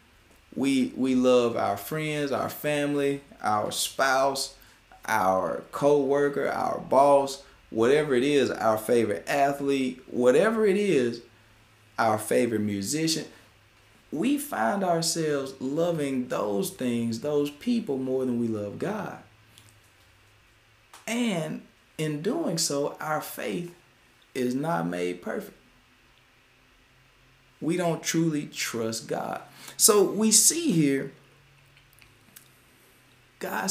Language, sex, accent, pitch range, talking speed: English, male, American, 110-165 Hz, 105 wpm